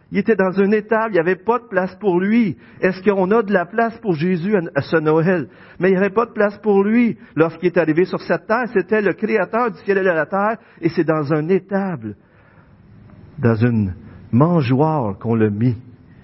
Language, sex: French, male